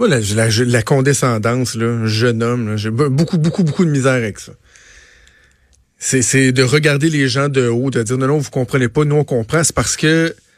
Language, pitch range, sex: French, 120-150 Hz, male